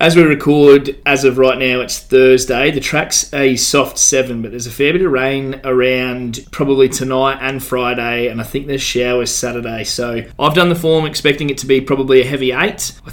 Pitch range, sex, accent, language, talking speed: 125-145 Hz, male, Australian, English, 210 wpm